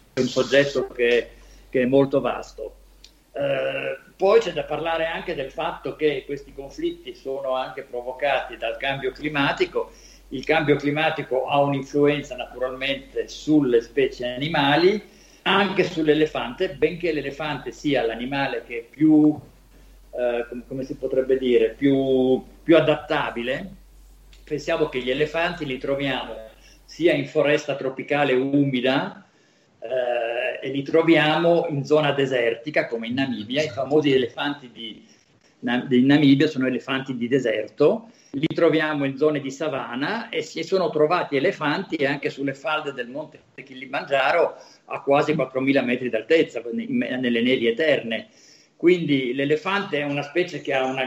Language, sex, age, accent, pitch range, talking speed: Italian, male, 50-69, native, 130-160 Hz, 135 wpm